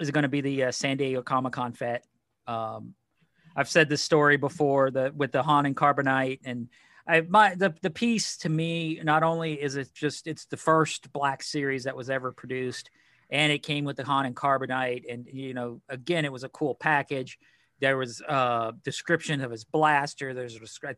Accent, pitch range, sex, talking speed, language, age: American, 130-155 Hz, male, 205 wpm, English, 40-59